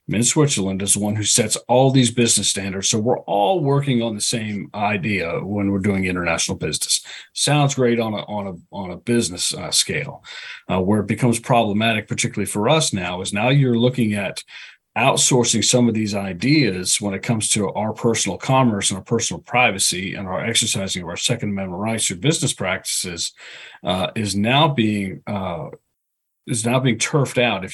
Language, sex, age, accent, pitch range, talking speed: English, male, 40-59, American, 100-120 Hz, 190 wpm